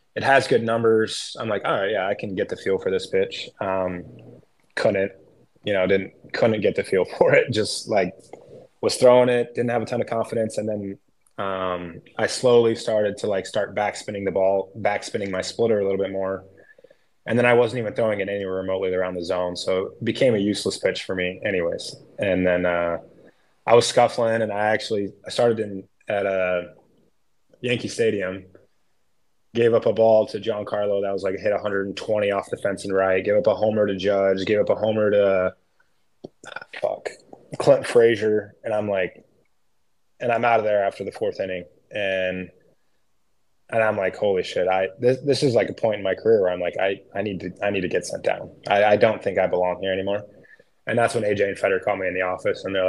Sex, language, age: male, English, 20-39